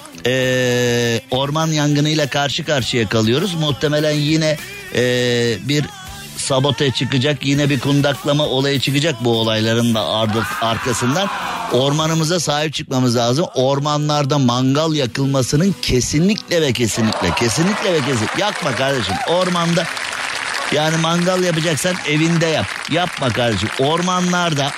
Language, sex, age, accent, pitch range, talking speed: Turkish, male, 50-69, native, 125-175 Hz, 110 wpm